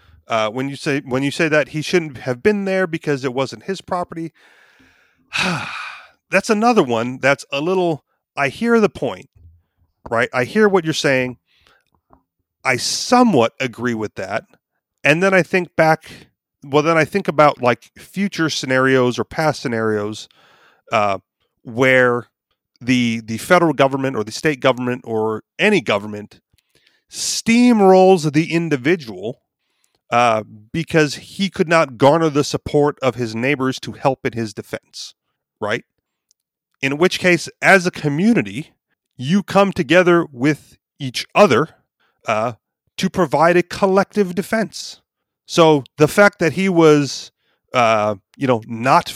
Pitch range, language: 125-180 Hz, English